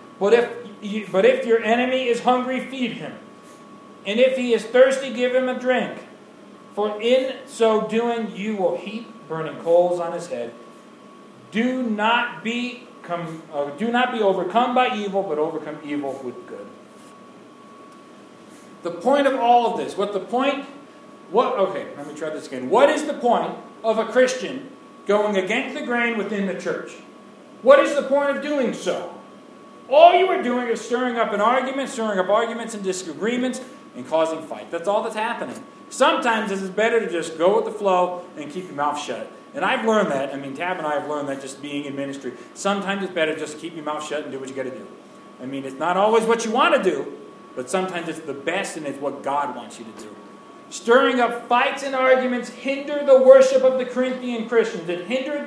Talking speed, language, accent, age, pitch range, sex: 200 wpm, English, American, 40-59, 170-255 Hz, male